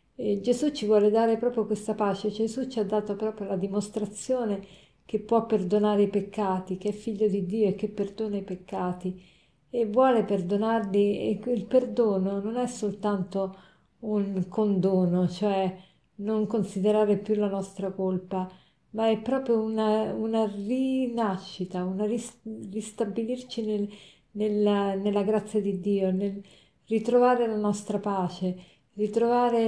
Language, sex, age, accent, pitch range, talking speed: Italian, female, 50-69, native, 195-225 Hz, 135 wpm